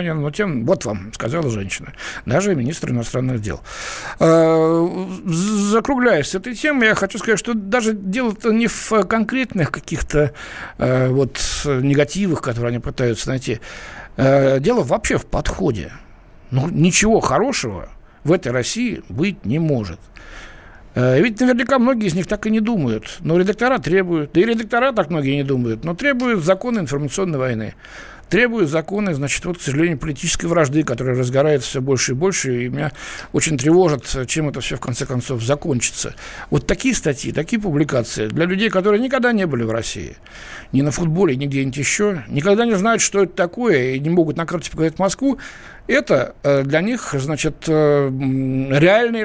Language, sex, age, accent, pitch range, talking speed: Russian, male, 60-79, native, 135-200 Hz, 155 wpm